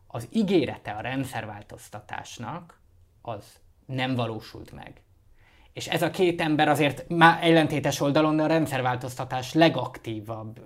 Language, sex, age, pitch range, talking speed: Hungarian, male, 20-39, 120-155 Hz, 115 wpm